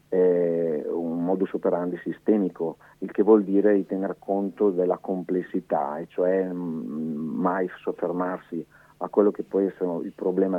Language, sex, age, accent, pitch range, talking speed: Italian, male, 50-69, native, 85-95 Hz, 135 wpm